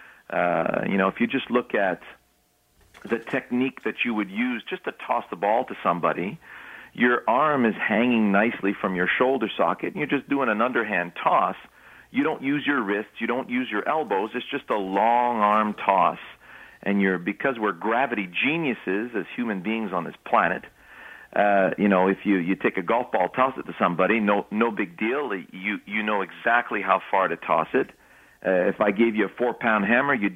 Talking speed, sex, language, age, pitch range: 205 wpm, male, English, 40-59, 100-120 Hz